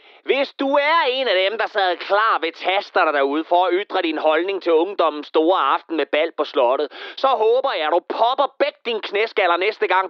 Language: Danish